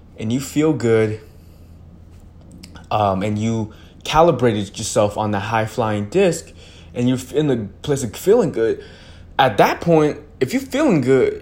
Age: 20-39